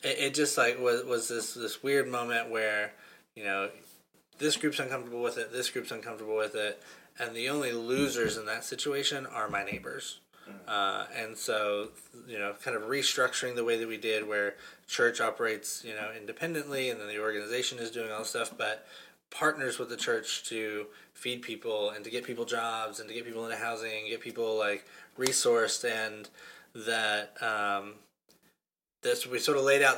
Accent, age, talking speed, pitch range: American, 20-39, 185 wpm, 105-130 Hz